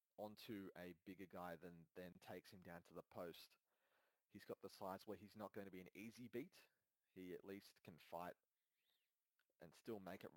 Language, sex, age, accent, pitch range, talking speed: English, male, 30-49, Australian, 90-105 Hz, 195 wpm